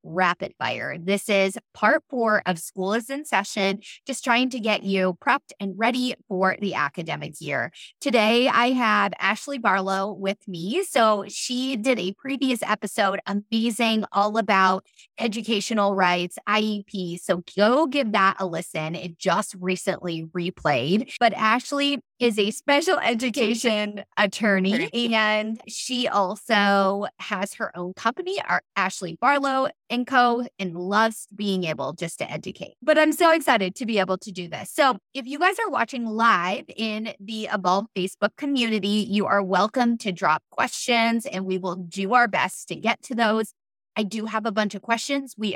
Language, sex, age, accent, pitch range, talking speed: English, female, 20-39, American, 190-240 Hz, 160 wpm